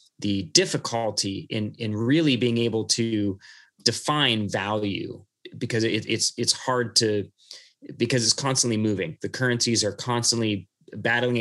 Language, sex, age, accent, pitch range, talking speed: English, male, 30-49, American, 110-130 Hz, 125 wpm